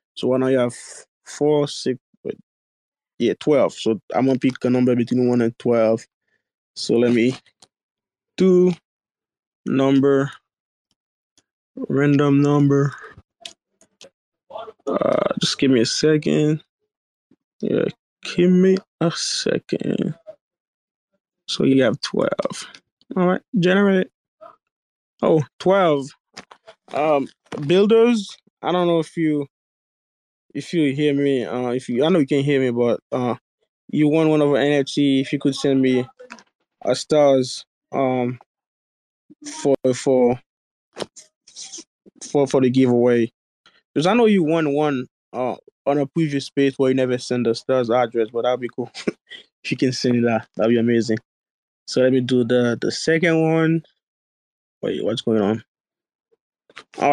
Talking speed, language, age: 140 wpm, English, 20-39